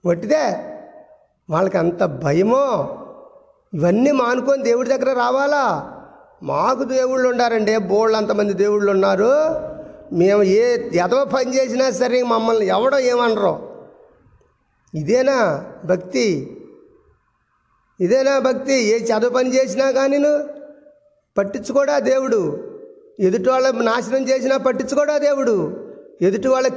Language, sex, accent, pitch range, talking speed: Telugu, male, native, 210-270 Hz, 95 wpm